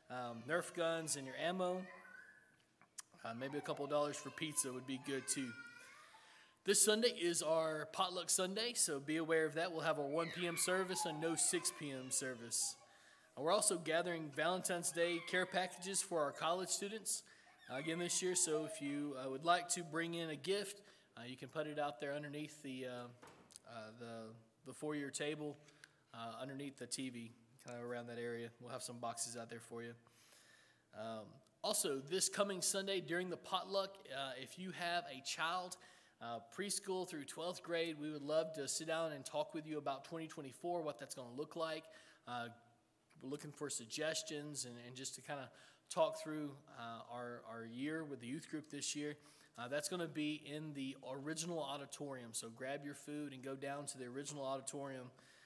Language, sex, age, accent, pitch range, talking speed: English, male, 20-39, American, 130-170 Hz, 195 wpm